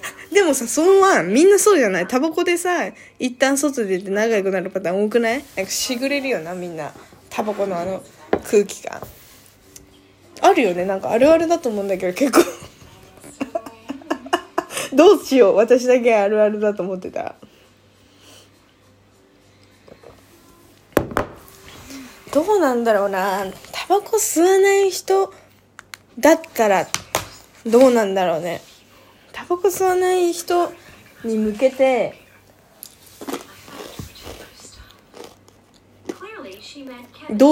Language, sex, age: Japanese, female, 20-39